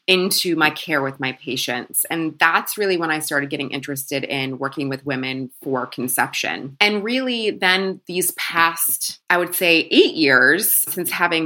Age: 20-39